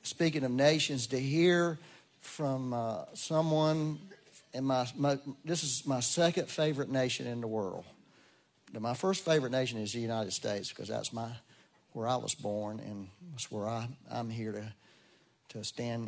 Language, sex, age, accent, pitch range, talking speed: English, male, 40-59, American, 120-175 Hz, 165 wpm